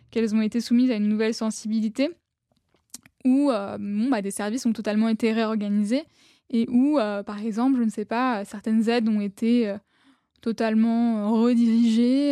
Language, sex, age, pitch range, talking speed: French, female, 10-29, 215-245 Hz, 165 wpm